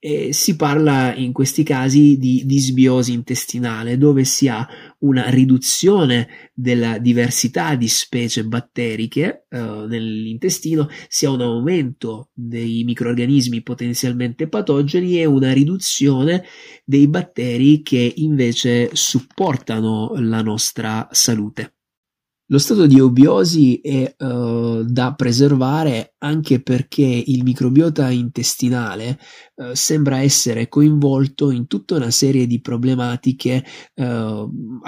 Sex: male